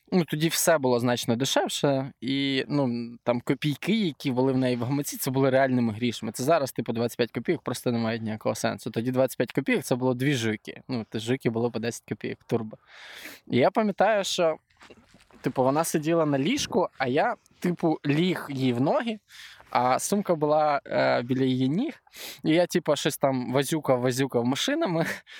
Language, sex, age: Ukrainian, male, 20-39